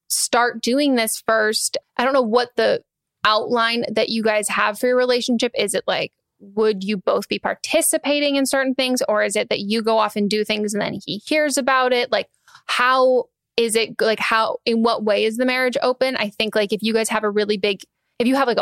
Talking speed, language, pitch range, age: 230 wpm, English, 215-245 Hz, 10-29